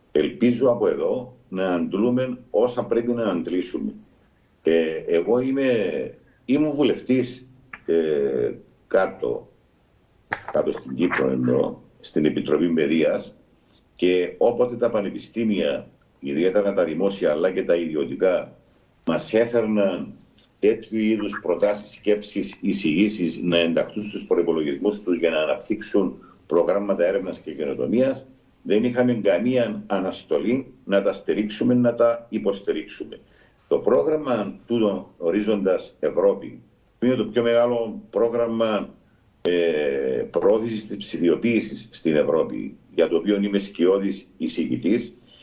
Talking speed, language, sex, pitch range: 110 wpm, Greek, male, 100-130 Hz